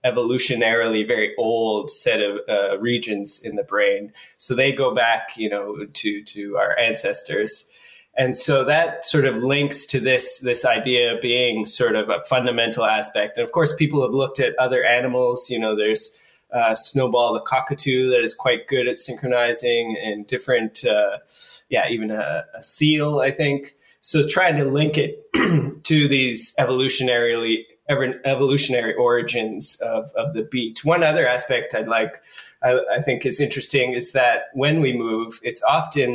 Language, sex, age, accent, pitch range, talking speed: English, male, 20-39, American, 120-155 Hz, 165 wpm